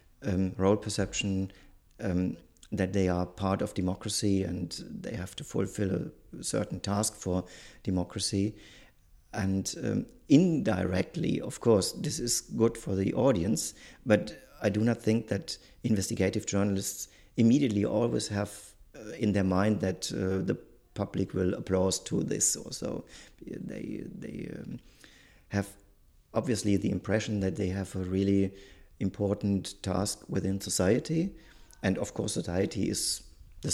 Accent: German